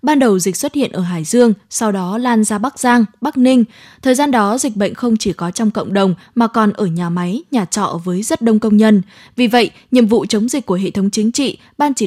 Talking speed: 260 wpm